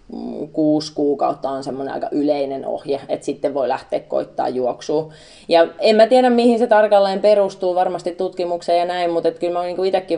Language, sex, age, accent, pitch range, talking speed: Finnish, female, 30-49, native, 150-175 Hz, 175 wpm